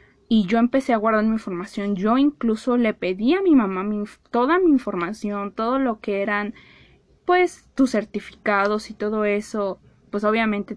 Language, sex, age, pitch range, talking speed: Spanish, female, 20-39, 205-245 Hz, 160 wpm